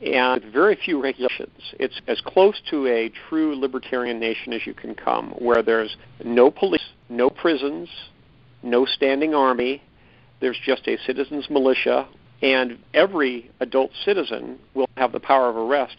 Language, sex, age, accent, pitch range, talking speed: English, male, 50-69, American, 120-140 Hz, 150 wpm